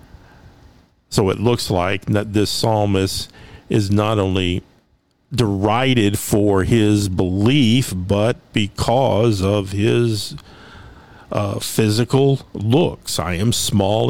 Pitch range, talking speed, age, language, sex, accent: 100-130 Hz, 100 wpm, 50-69, English, male, American